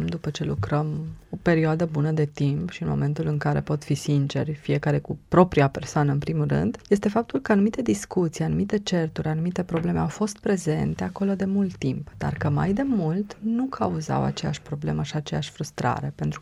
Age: 20-39